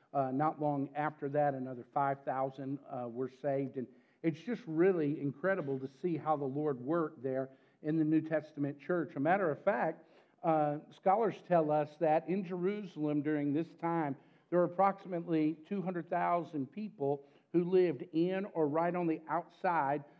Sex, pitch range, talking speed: male, 145-175 Hz, 160 wpm